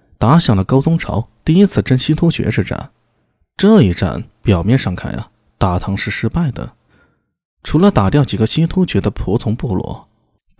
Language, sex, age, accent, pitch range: Chinese, male, 20-39, native, 100-150 Hz